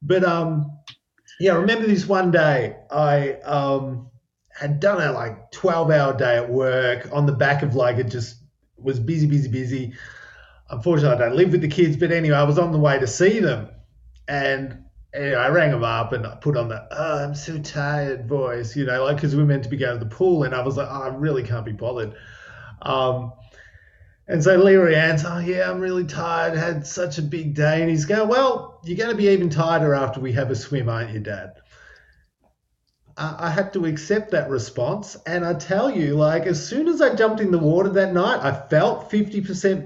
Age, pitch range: 30-49, 135-175 Hz